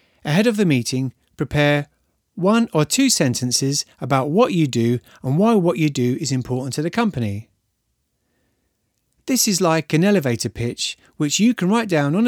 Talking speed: 170 wpm